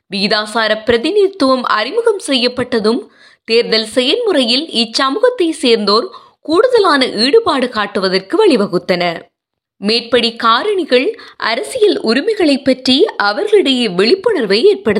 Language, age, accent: Tamil, 20-39, native